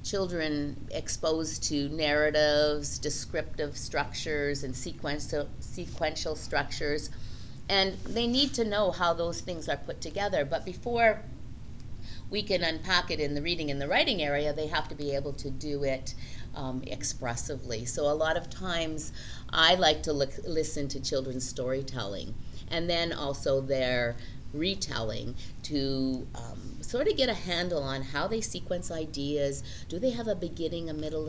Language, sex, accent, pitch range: English, female, American, 135-180 Hz